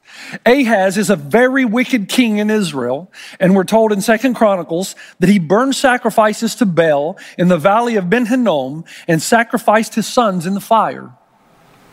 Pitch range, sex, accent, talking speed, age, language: 190-250 Hz, male, American, 160 wpm, 50-69, English